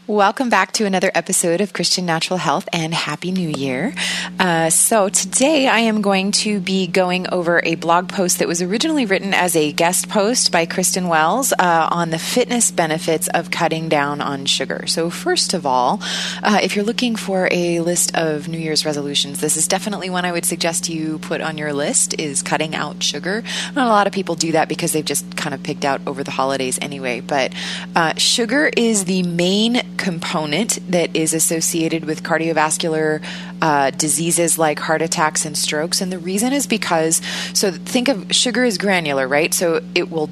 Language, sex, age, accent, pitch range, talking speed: English, female, 20-39, American, 160-190 Hz, 195 wpm